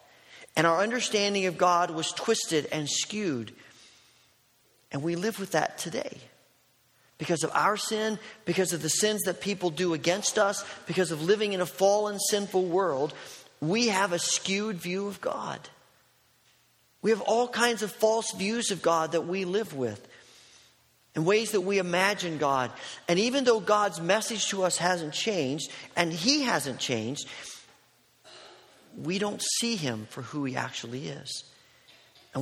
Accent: American